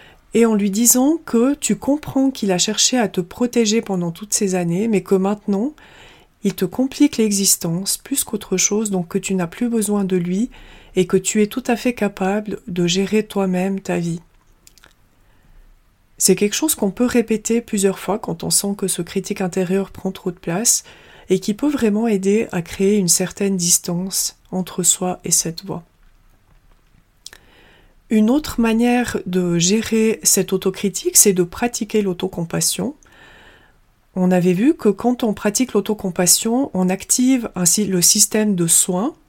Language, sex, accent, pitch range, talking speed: French, female, French, 185-220 Hz, 165 wpm